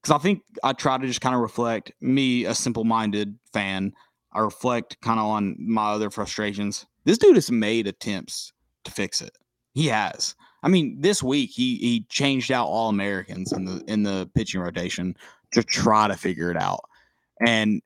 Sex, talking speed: male, 185 wpm